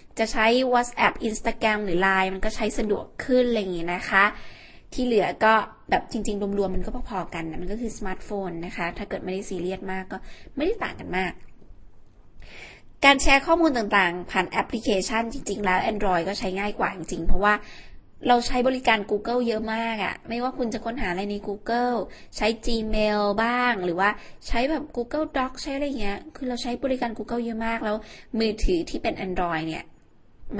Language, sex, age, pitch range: Thai, female, 20-39, 190-235 Hz